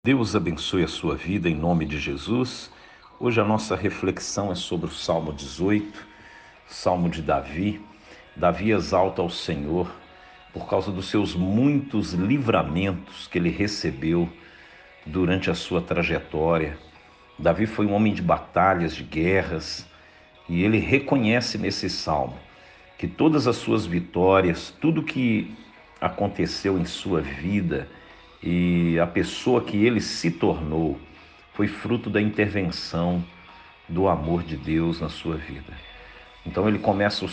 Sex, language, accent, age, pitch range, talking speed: male, Portuguese, Brazilian, 60-79, 85-105 Hz, 135 wpm